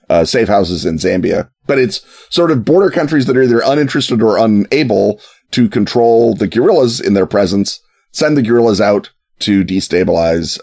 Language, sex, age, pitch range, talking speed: English, male, 30-49, 100-125 Hz, 170 wpm